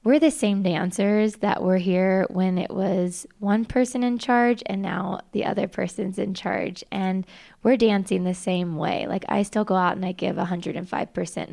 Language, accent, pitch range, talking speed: English, American, 180-205 Hz, 185 wpm